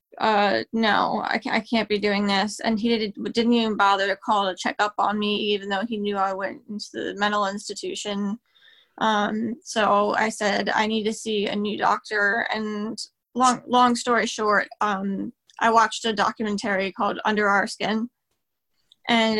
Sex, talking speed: female, 180 wpm